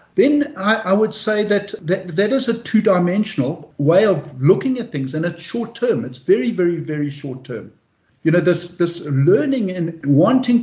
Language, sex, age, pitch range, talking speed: English, male, 50-69, 145-205 Hz, 185 wpm